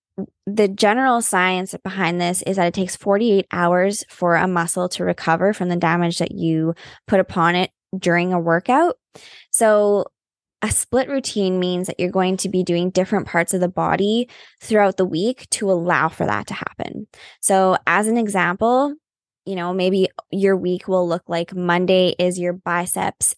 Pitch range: 180-215 Hz